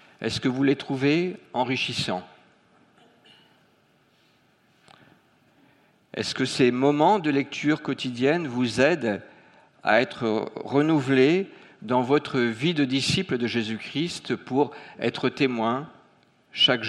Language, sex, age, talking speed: French, male, 50-69, 105 wpm